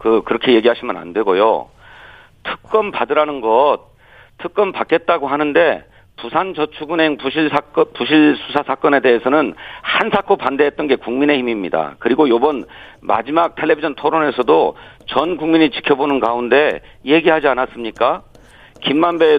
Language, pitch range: Korean, 135-185 Hz